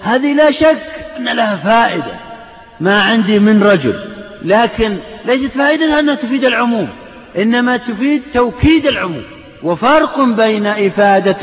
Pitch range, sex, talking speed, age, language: 205-270 Hz, male, 120 wpm, 50-69, Arabic